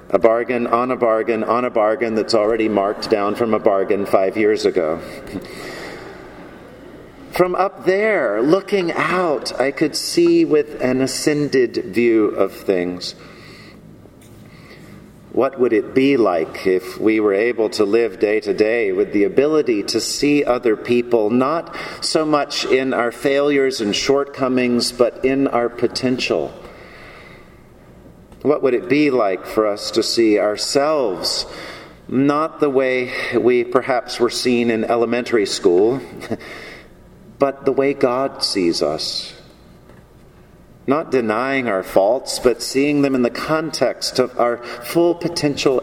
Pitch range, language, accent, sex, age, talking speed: 120-155 Hz, English, American, male, 50-69, 135 wpm